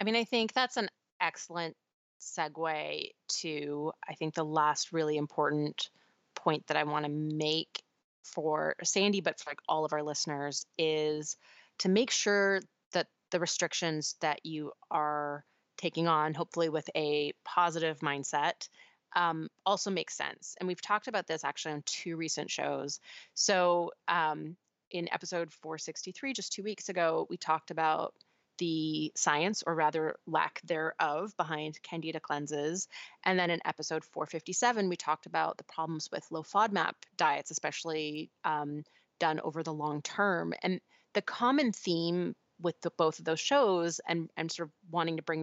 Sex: female